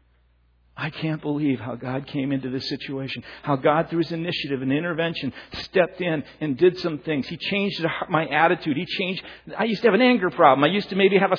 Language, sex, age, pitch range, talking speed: English, male, 50-69, 140-220 Hz, 215 wpm